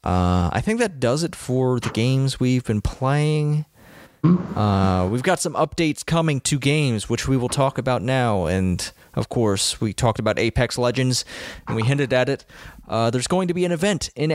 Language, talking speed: English, 195 wpm